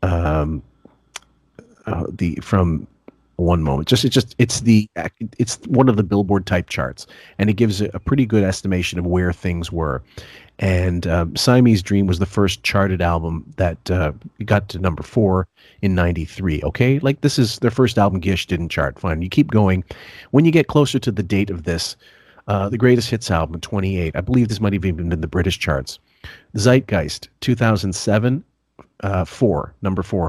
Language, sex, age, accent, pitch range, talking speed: English, male, 40-59, American, 90-115 Hz, 185 wpm